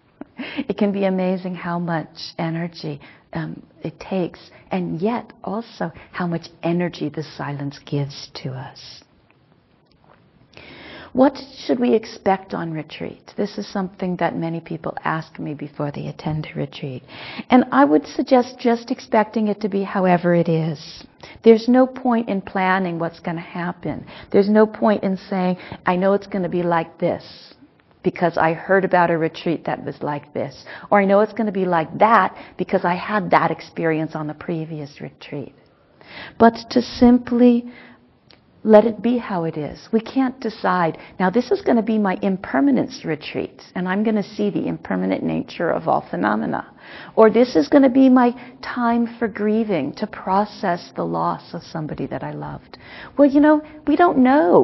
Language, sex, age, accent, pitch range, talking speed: English, female, 50-69, American, 165-230 Hz, 175 wpm